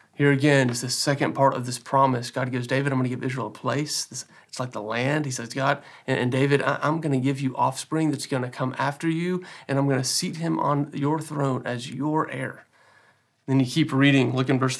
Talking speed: 240 wpm